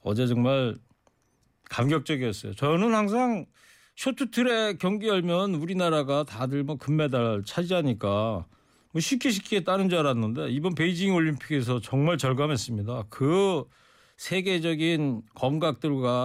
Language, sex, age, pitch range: Korean, male, 40-59, 120-160 Hz